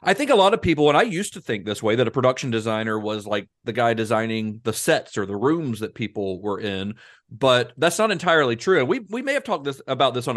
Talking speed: 265 wpm